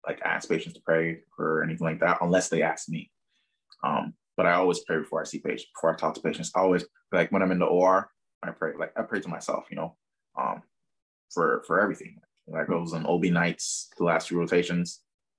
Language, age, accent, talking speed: English, 20-39, American, 225 wpm